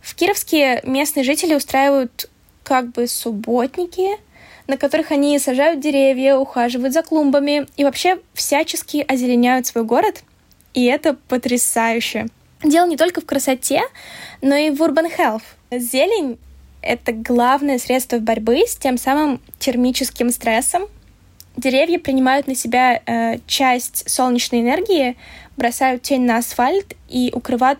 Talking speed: 125 wpm